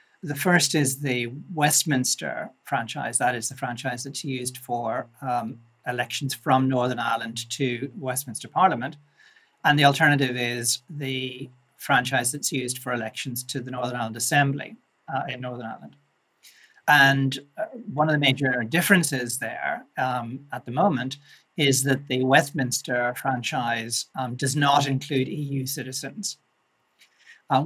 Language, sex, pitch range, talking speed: English, male, 125-145 Hz, 140 wpm